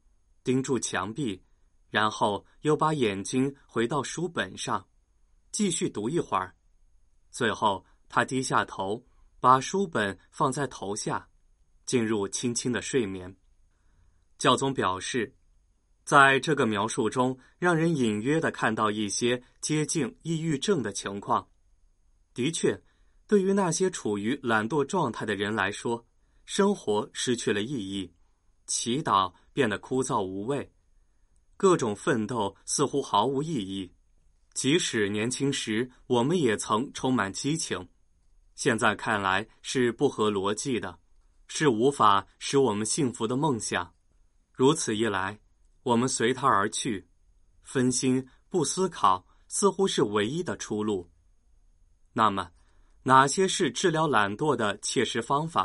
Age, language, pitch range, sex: 20-39, Chinese, 90-135 Hz, male